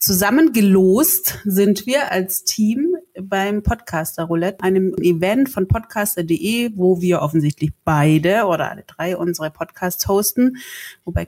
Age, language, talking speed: 30-49, German, 115 wpm